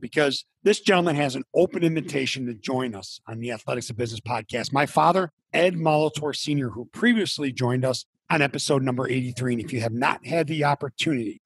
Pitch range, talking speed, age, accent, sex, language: 125-155 Hz, 195 wpm, 40-59, American, male, English